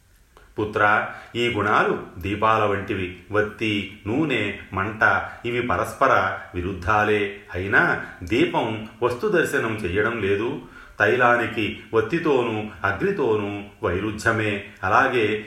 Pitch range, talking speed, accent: 95-110 Hz, 85 wpm, native